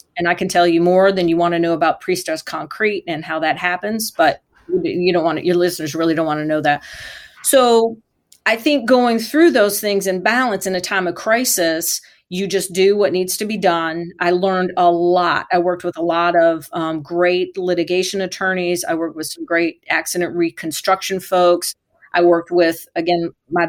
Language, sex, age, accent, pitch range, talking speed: English, female, 40-59, American, 170-195 Hz, 205 wpm